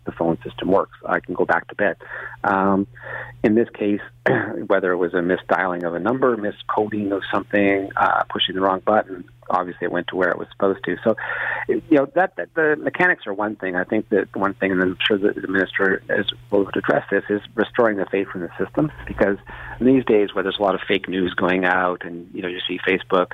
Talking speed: 230 wpm